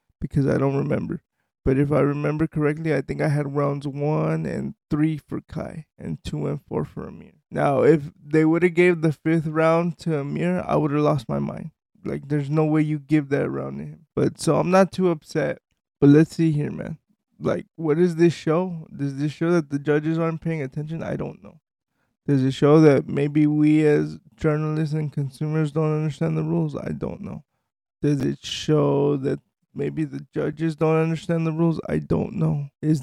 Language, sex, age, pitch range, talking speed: English, male, 20-39, 145-160 Hz, 205 wpm